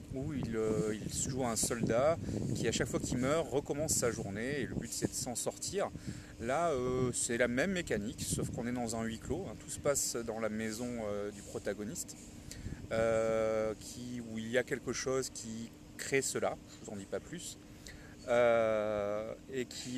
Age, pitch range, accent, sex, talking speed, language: 30-49, 110-130 Hz, French, male, 195 wpm, French